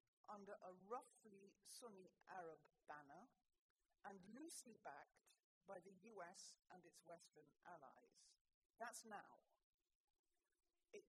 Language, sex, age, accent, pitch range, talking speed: English, female, 50-69, British, 195-260 Hz, 105 wpm